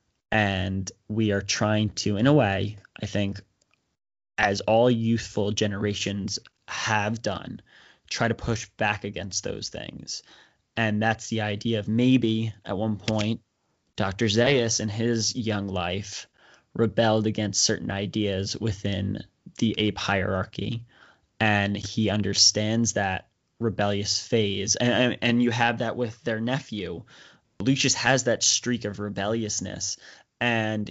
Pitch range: 100-115 Hz